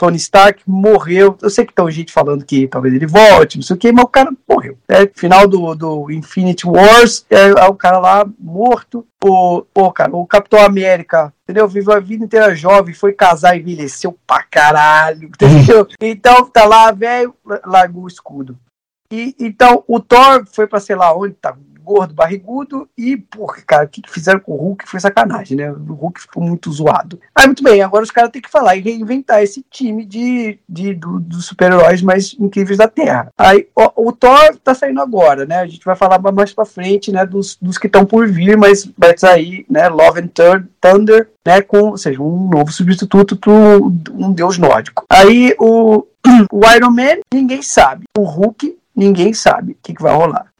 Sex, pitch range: male, 175-225 Hz